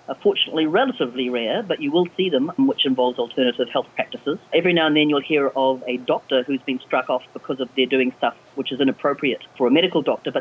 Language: English